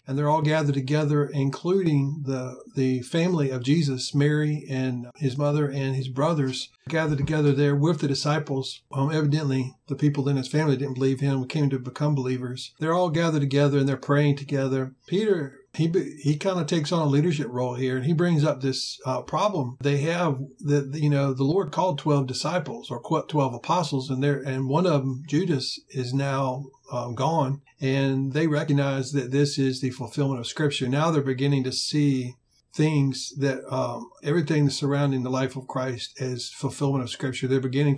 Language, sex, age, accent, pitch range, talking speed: English, male, 50-69, American, 130-150 Hz, 185 wpm